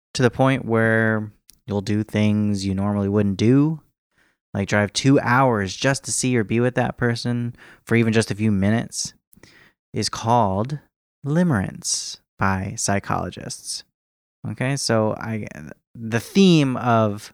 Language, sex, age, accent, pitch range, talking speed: English, male, 30-49, American, 105-125 Hz, 135 wpm